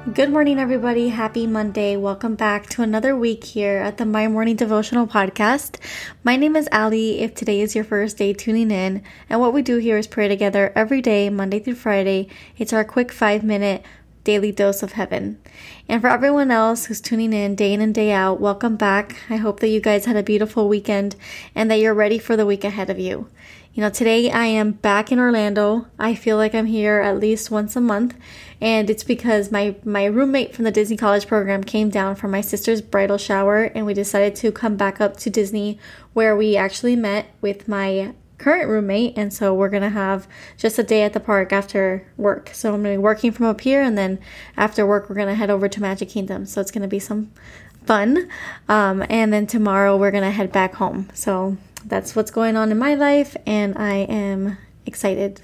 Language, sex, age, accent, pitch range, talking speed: English, female, 20-39, American, 200-225 Hz, 215 wpm